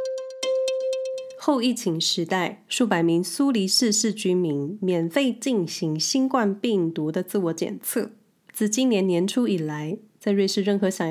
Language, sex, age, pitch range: Chinese, female, 20-39, 180-230 Hz